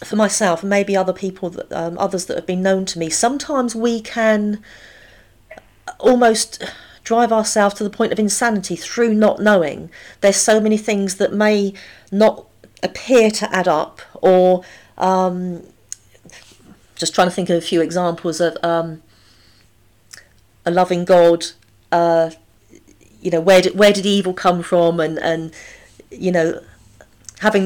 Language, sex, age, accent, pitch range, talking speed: English, female, 40-59, British, 165-200 Hz, 150 wpm